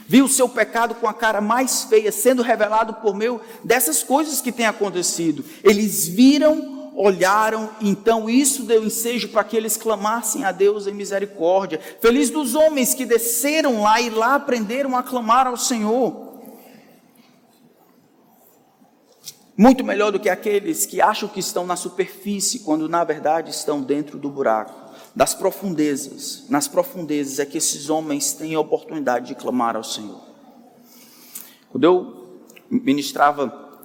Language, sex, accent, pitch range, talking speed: Portuguese, male, Brazilian, 165-245 Hz, 145 wpm